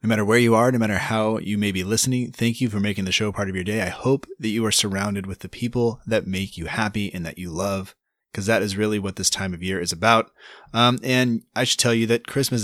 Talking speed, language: 275 wpm, English